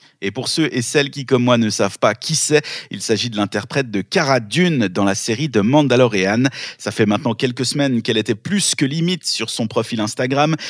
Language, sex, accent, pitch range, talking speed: French, male, French, 110-150 Hz, 220 wpm